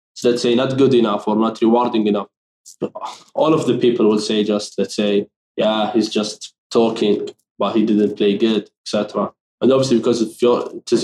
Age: 20-39